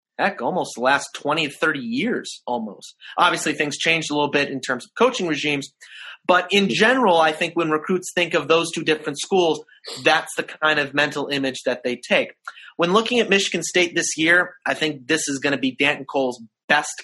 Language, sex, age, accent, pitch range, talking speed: English, male, 30-49, American, 130-160 Hz, 205 wpm